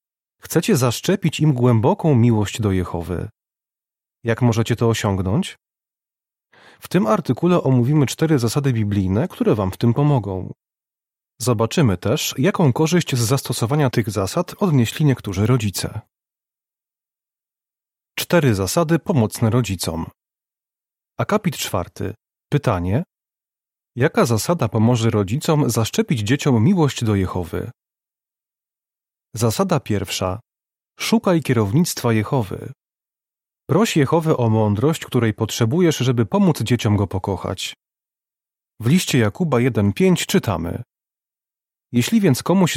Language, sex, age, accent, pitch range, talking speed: Polish, male, 30-49, native, 110-150 Hz, 105 wpm